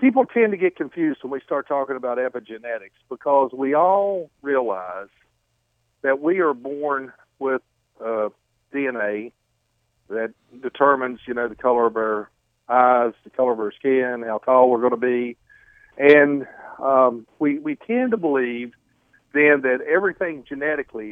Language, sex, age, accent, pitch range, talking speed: English, male, 50-69, American, 120-150 Hz, 150 wpm